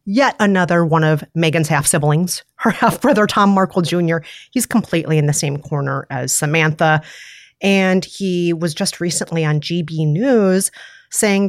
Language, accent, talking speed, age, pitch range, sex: English, American, 145 wpm, 30-49, 155-200 Hz, female